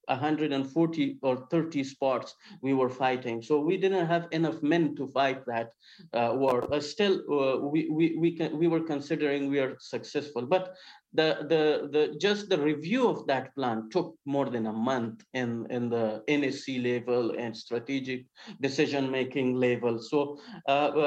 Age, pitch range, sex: 50-69, 130-165 Hz, male